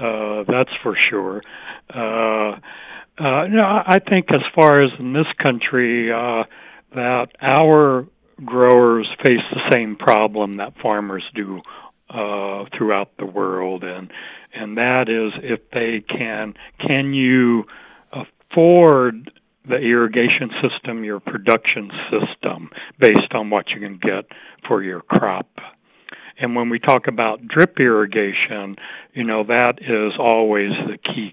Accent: American